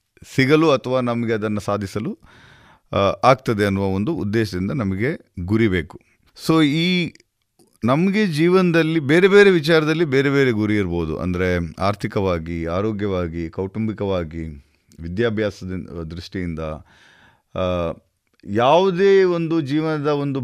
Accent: native